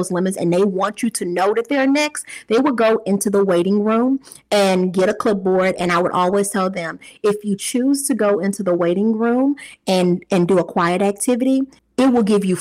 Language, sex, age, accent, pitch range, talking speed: English, female, 30-49, American, 180-220 Hz, 220 wpm